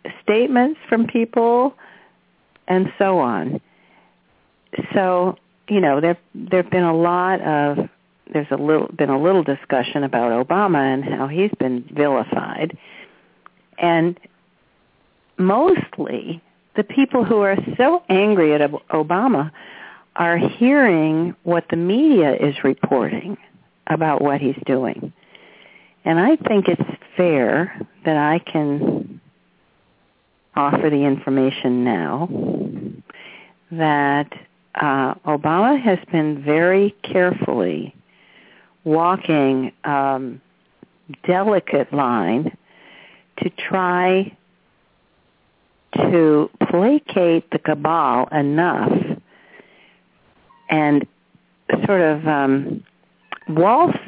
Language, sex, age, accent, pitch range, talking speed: English, female, 50-69, American, 145-195 Hz, 95 wpm